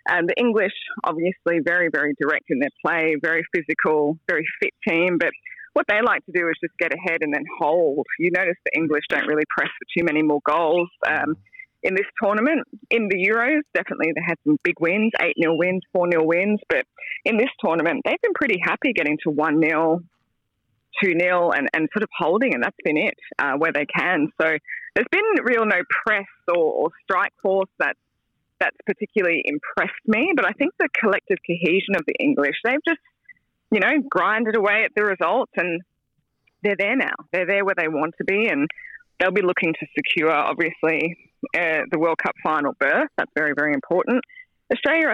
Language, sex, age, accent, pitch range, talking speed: English, female, 20-39, Australian, 160-220 Hz, 195 wpm